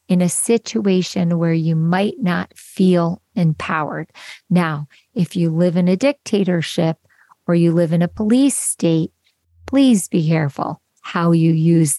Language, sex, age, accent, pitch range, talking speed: English, female, 50-69, American, 160-190 Hz, 145 wpm